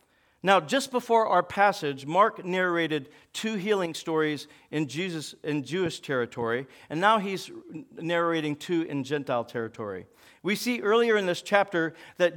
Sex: male